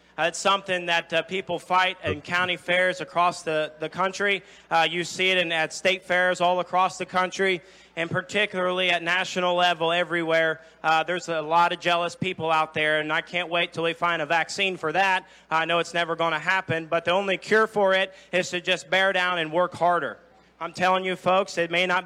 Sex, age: male, 30-49